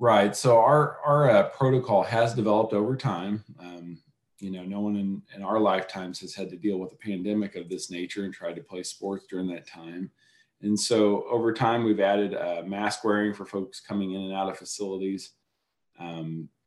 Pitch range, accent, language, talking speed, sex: 95-110 Hz, American, English, 200 wpm, male